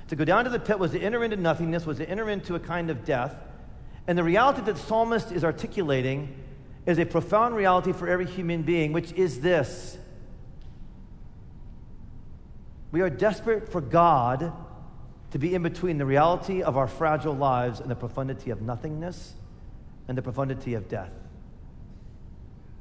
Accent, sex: American, male